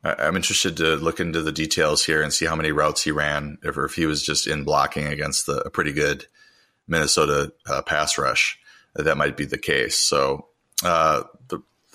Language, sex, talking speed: English, male, 205 wpm